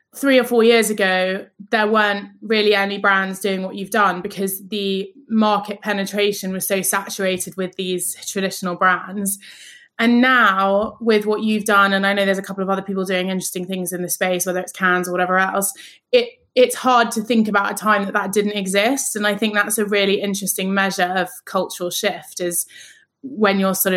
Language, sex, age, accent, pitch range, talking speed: English, female, 20-39, British, 185-210 Hz, 200 wpm